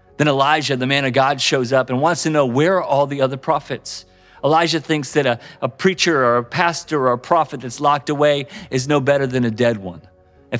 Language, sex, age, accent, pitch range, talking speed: English, male, 40-59, American, 125-155 Hz, 230 wpm